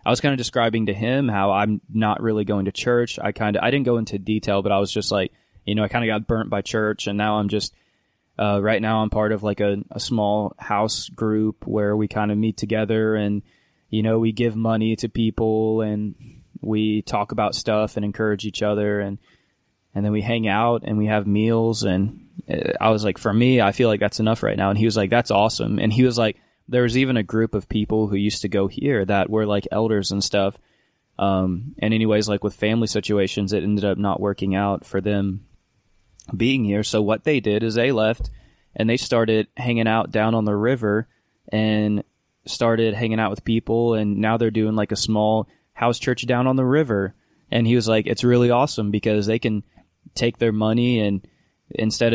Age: 20-39